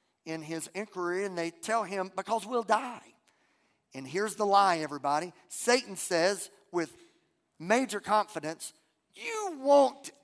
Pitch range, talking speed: 180-285 Hz, 130 wpm